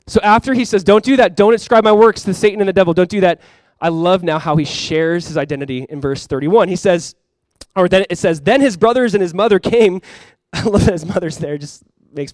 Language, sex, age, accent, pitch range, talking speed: English, male, 20-39, American, 140-200 Hz, 255 wpm